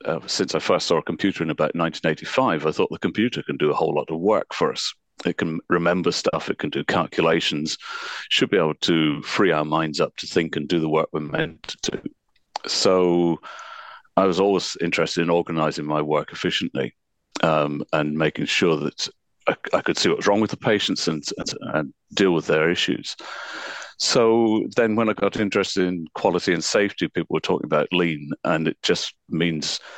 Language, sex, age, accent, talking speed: English, male, 40-59, British, 200 wpm